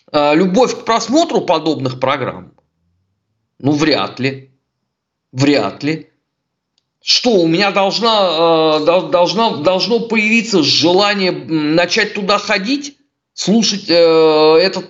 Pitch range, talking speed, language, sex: 135-205 Hz, 100 wpm, Russian, male